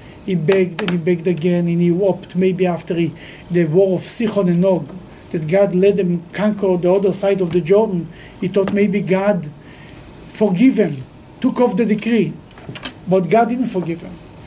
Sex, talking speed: male, 185 wpm